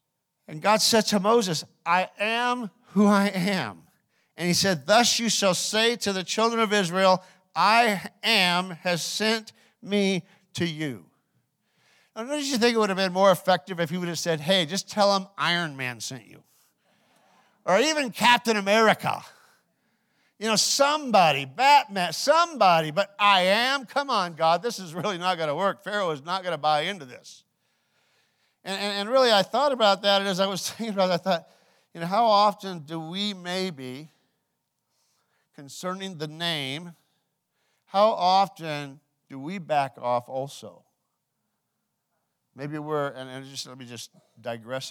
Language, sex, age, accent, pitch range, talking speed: English, male, 50-69, American, 145-205 Hz, 165 wpm